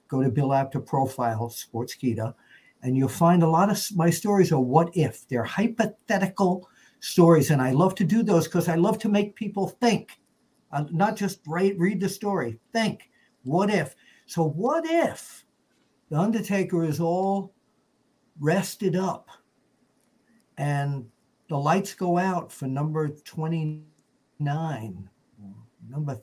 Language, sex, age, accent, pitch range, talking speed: English, male, 60-79, American, 130-185 Hz, 140 wpm